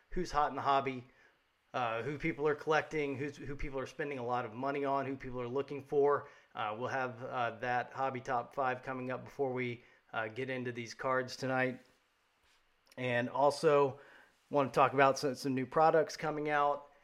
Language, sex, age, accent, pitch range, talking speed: English, male, 30-49, American, 125-145 Hz, 195 wpm